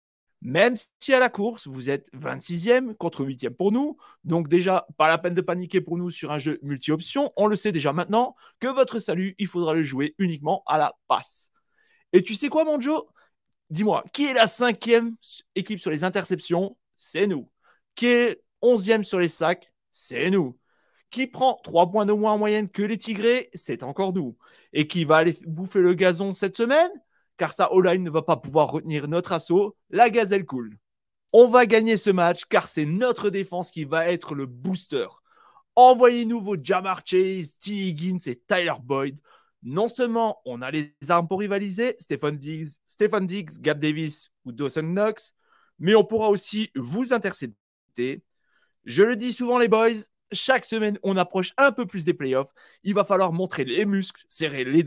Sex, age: male, 30-49